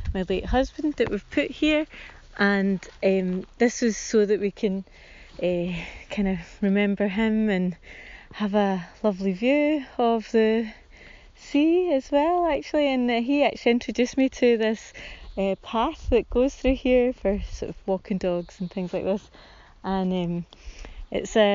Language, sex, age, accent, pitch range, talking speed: English, female, 30-49, British, 190-250 Hz, 160 wpm